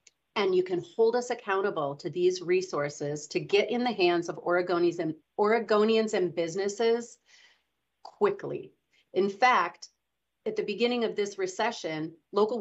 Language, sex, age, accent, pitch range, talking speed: English, female, 30-49, American, 175-225 Hz, 135 wpm